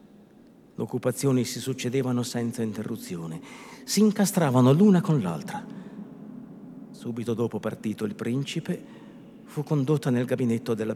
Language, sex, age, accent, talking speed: Italian, male, 50-69, native, 110 wpm